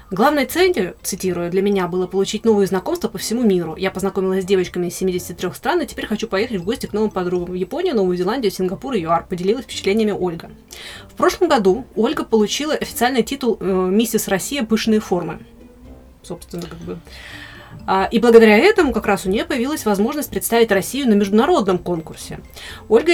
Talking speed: 175 wpm